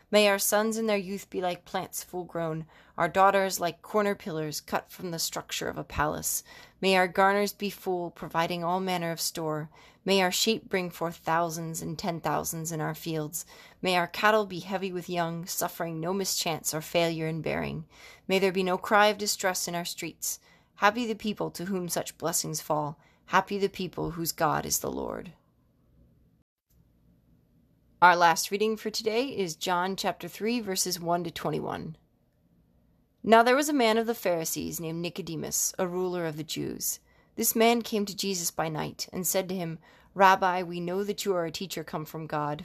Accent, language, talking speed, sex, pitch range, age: American, English, 190 wpm, female, 165-200 Hz, 30-49